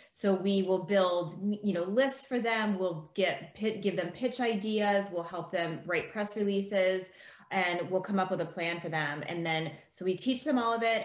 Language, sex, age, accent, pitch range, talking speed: English, female, 30-49, American, 165-205 Hz, 215 wpm